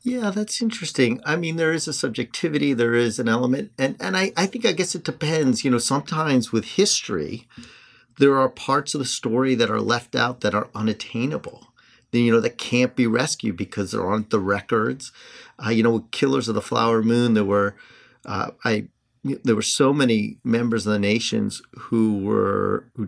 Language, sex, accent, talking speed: English, male, American, 195 wpm